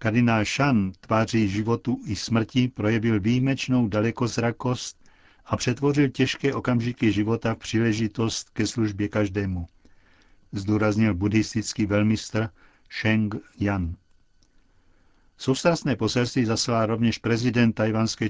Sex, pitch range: male, 100-115 Hz